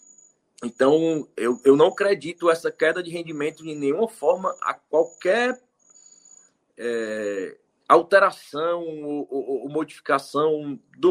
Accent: Brazilian